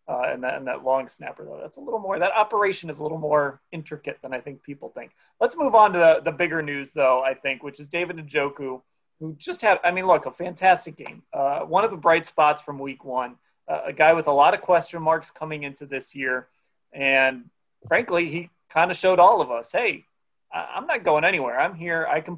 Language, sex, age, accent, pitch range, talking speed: English, male, 30-49, American, 140-170 Hz, 235 wpm